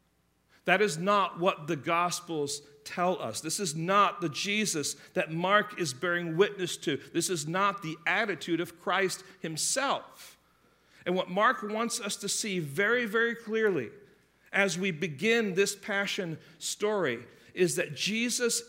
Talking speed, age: 150 wpm, 50-69